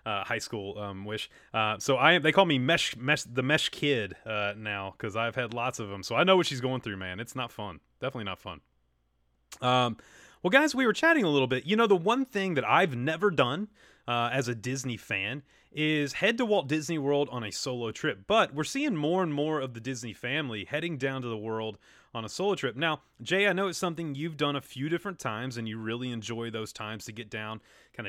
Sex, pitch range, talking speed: male, 115-160 Hz, 240 wpm